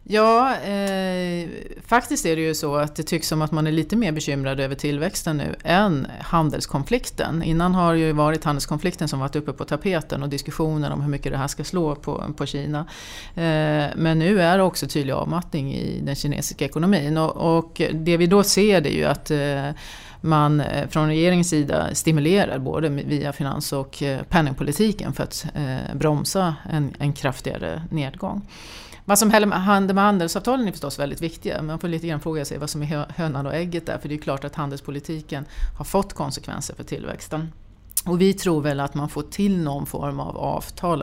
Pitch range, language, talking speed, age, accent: 145-175 Hz, Swedish, 195 wpm, 30-49, native